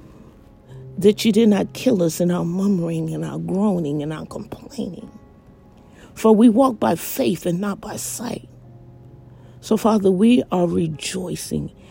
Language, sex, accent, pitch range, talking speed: English, female, American, 160-200 Hz, 145 wpm